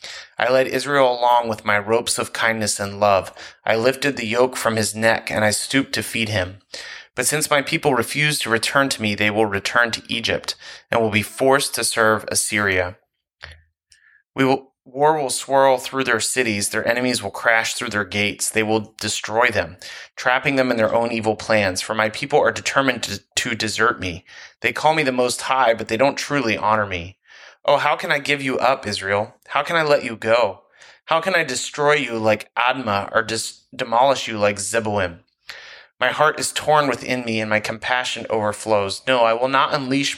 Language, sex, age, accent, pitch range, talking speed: English, male, 30-49, American, 105-135 Hz, 195 wpm